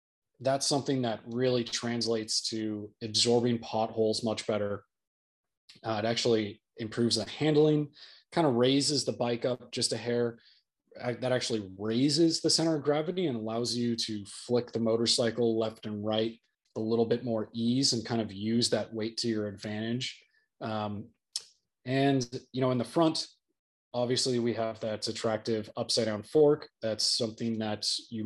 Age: 20-39